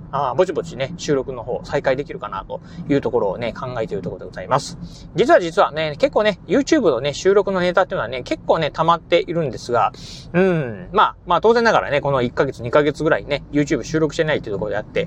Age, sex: 30-49, male